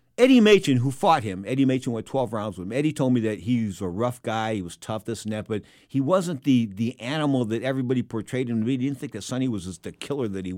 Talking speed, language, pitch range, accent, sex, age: 270 wpm, English, 100-130 Hz, American, male, 50-69